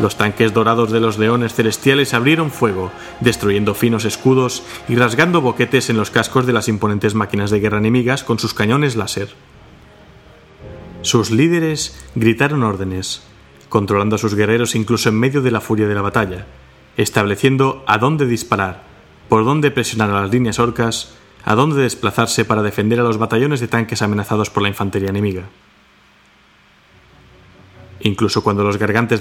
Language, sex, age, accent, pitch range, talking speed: Spanish, male, 30-49, Spanish, 105-120 Hz, 155 wpm